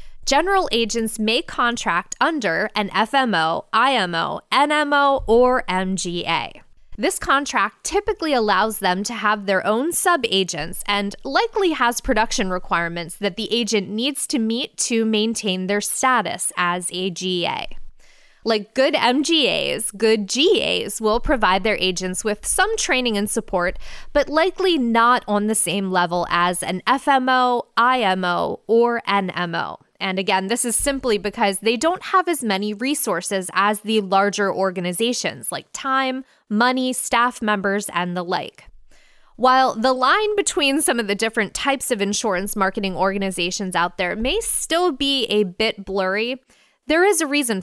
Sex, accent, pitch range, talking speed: female, American, 190-260 Hz, 145 wpm